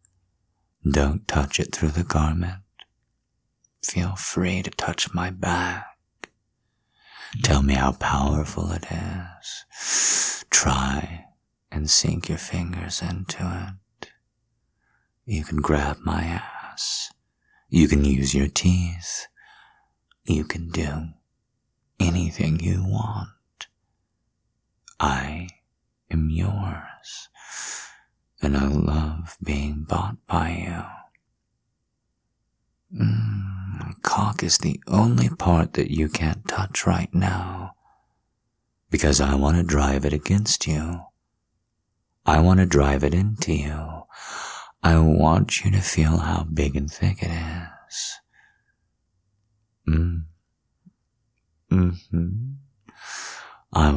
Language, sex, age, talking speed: English, male, 30-49, 100 wpm